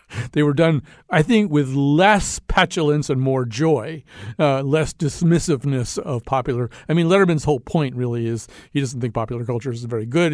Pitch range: 120-150 Hz